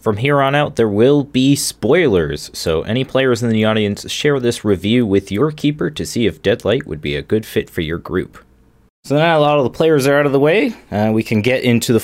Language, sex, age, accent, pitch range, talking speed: English, male, 20-39, American, 90-125 Hz, 255 wpm